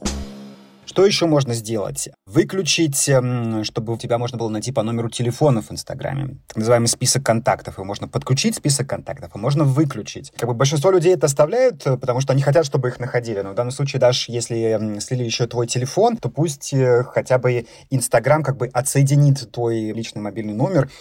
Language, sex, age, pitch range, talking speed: Ukrainian, male, 30-49, 115-140 Hz, 180 wpm